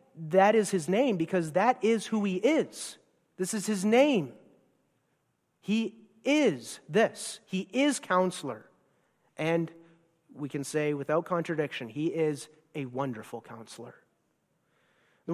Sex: male